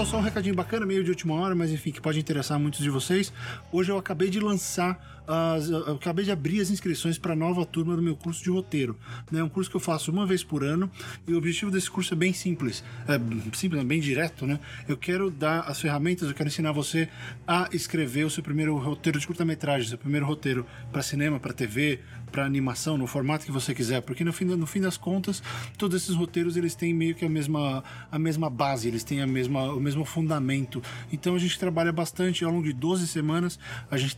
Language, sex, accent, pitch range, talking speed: Portuguese, male, Brazilian, 140-170 Hz, 225 wpm